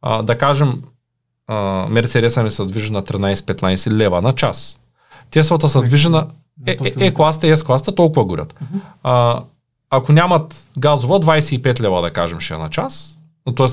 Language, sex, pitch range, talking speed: Bulgarian, male, 125-170 Hz, 155 wpm